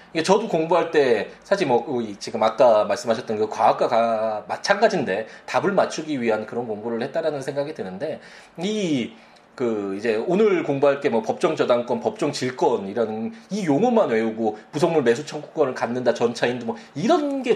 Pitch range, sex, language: 150-230 Hz, male, Korean